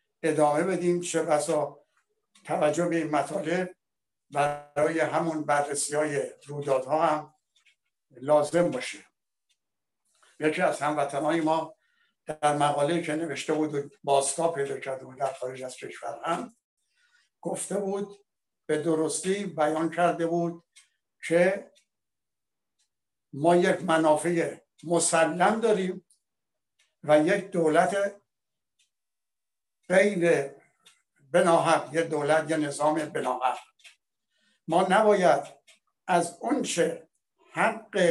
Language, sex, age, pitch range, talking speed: Persian, male, 60-79, 155-190 Hz, 100 wpm